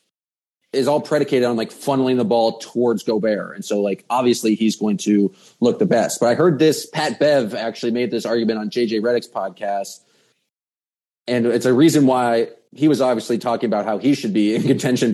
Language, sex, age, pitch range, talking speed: English, male, 30-49, 110-140 Hz, 200 wpm